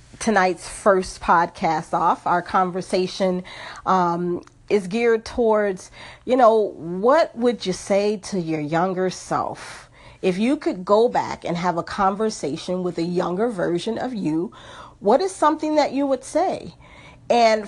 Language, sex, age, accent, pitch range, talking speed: English, female, 40-59, American, 170-215 Hz, 145 wpm